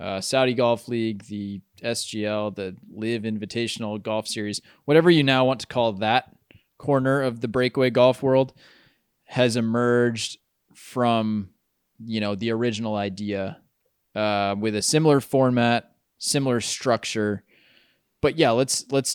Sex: male